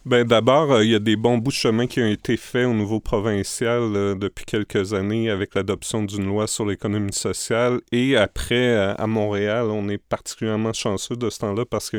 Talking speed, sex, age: 210 wpm, male, 40-59